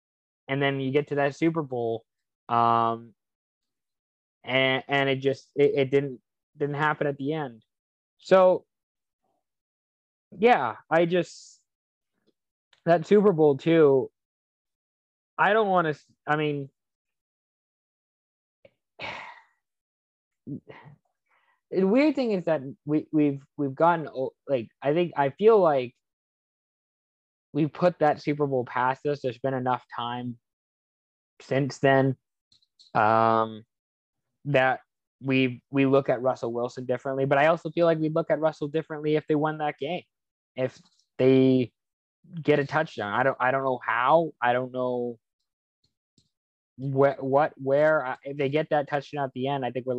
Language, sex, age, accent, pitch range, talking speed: English, male, 20-39, American, 125-155 Hz, 140 wpm